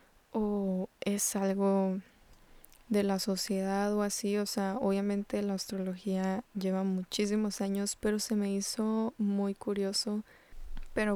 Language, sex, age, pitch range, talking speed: Spanish, female, 20-39, 200-220 Hz, 125 wpm